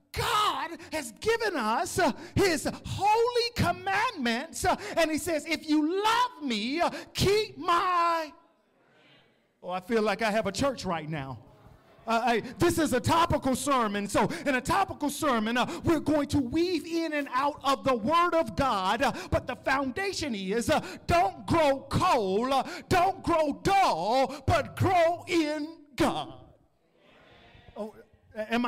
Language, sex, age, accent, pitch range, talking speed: English, male, 40-59, American, 230-315 Hz, 150 wpm